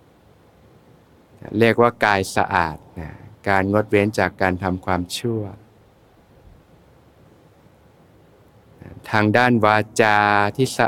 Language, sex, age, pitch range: Thai, male, 60-79, 100-120 Hz